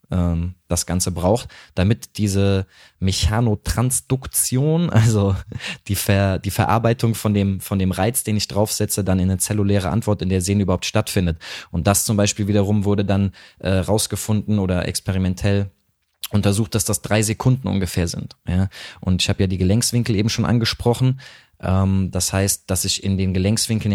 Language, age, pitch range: German, 20-39, 95-115 Hz